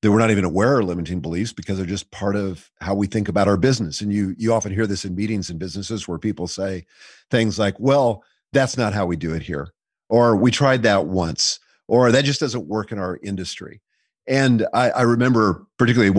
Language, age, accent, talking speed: English, 50-69, American, 220 wpm